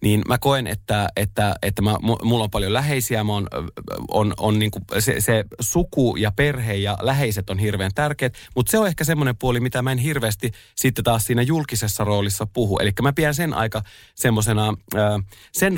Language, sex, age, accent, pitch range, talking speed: Finnish, male, 30-49, native, 100-130 Hz, 185 wpm